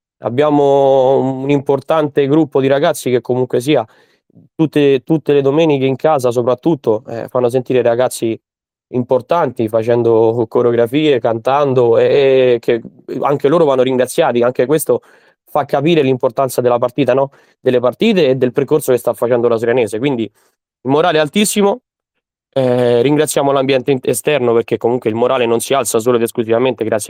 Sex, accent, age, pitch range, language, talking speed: male, native, 20-39, 120-140 Hz, Italian, 155 wpm